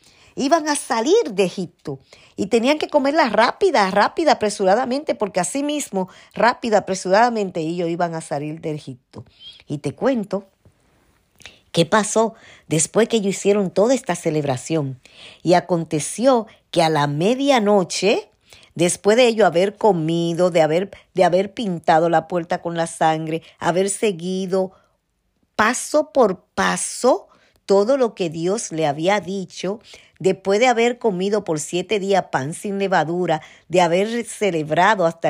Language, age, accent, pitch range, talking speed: Spanish, 50-69, American, 165-215 Hz, 140 wpm